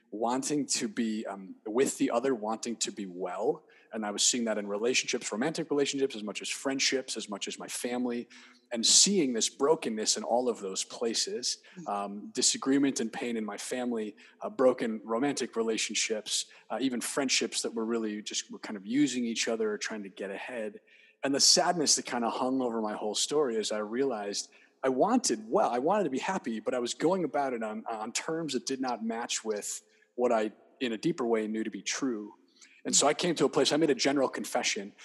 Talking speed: 215 wpm